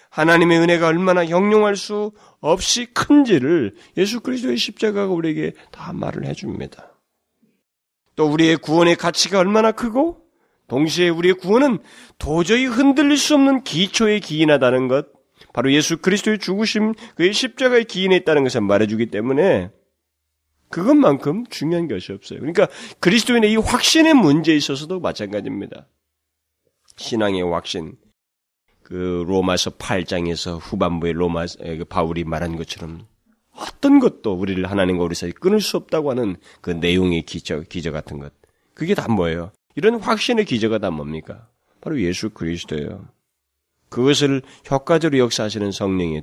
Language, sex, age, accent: Korean, male, 30-49, native